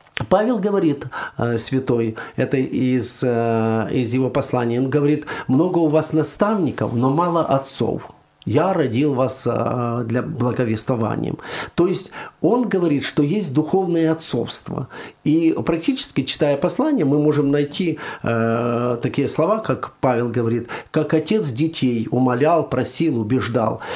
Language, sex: Ukrainian, male